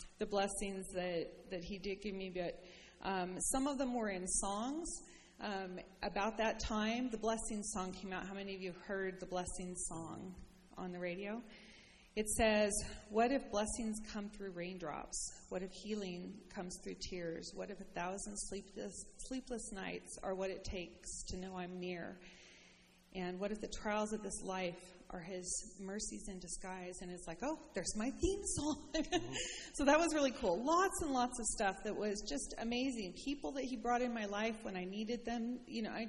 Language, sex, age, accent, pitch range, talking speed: English, female, 30-49, American, 185-225 Hz, 190 wpm